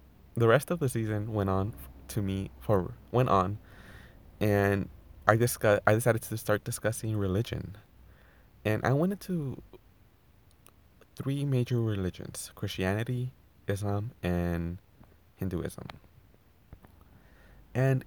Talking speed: 110 wpm